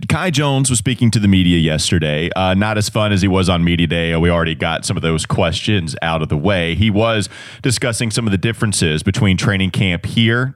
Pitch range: 90-120 Hz